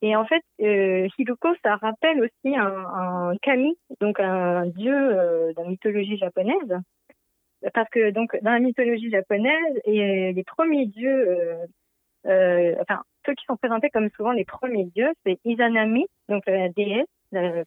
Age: 30-49